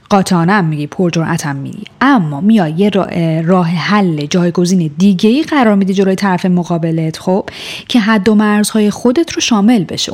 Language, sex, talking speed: Persian, female, 155 wpm